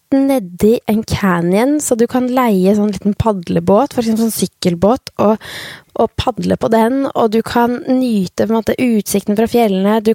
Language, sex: English, female